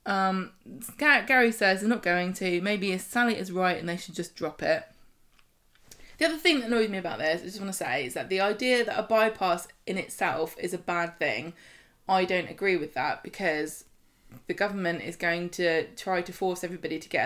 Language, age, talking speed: English, 20-39, 210 wpm